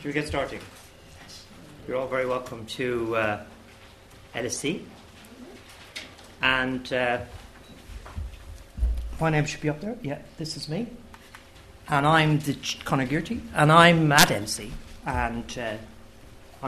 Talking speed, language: 120 wpm, English